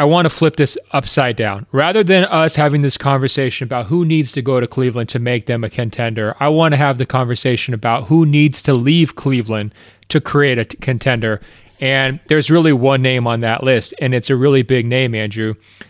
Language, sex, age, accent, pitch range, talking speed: English, male, 30-49, American, 120-145 Hz, 210 wpm